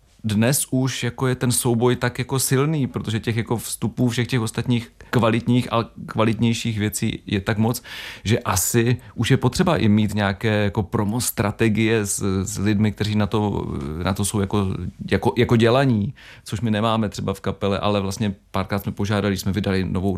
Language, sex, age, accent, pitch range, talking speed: Czech, male, 40-59, native, 100-120 Hz, 180 wpm